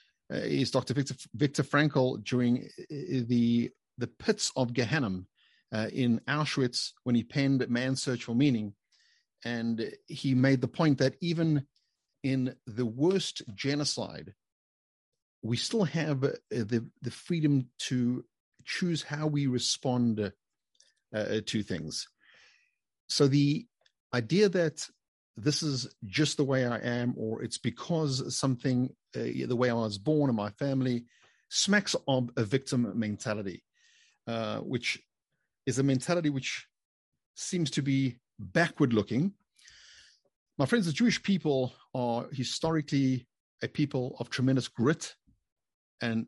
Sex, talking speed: male, 130 wpm